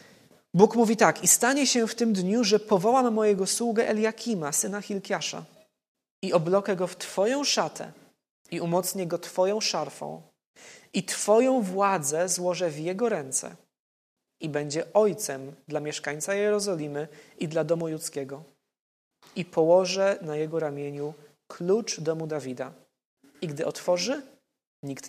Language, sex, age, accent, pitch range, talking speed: Polish, male, 20-39, native, 155-210 Hz, 135 wpm